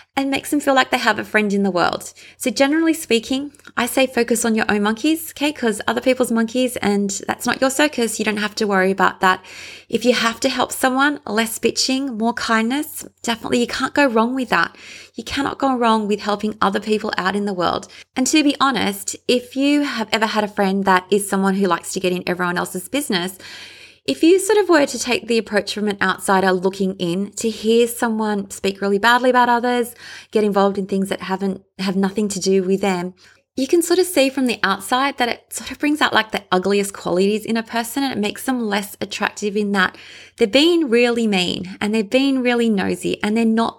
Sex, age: female, 20-39